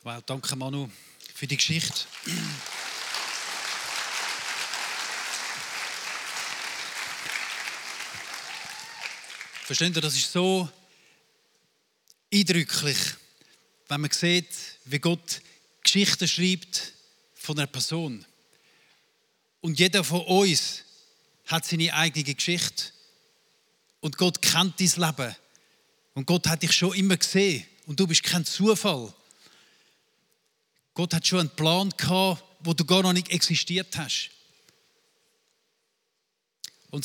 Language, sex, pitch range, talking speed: English, male, 160-195 Hz, 95 wpm